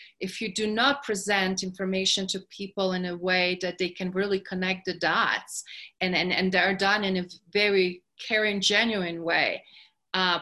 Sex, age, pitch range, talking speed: female, 30-49, 185-220 Hz, 175 wpm